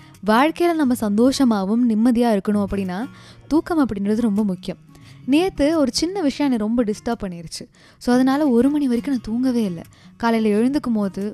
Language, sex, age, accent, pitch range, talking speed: Tamil, female, 20-39, native, 195-260 Hz, 155 wpm